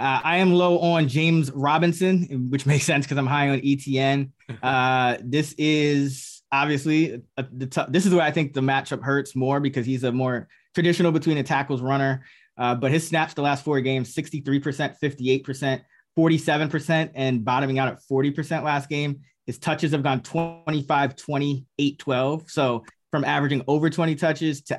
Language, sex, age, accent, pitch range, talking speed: English, male, 20-39, American, 125-150 Hz, 175 wpm